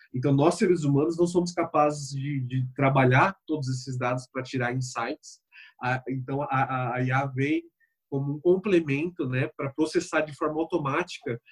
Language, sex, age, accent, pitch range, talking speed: Portuguese, male, 20-39, Brazilian, 120-150 Hz, 155 wpm